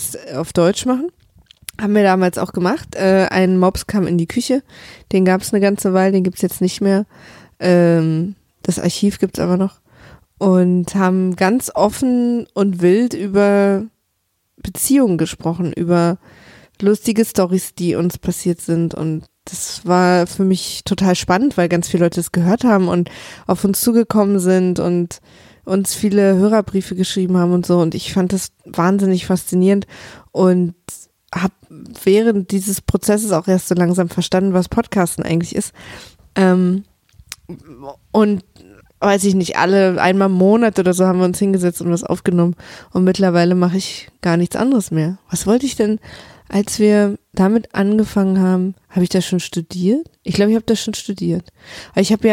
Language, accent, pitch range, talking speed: German, German, 175-200 Hz, 165 wpm